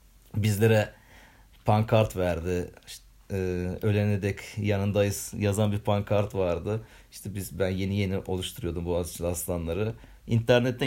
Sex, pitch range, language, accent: male, 95-115 Hz, Turkish, native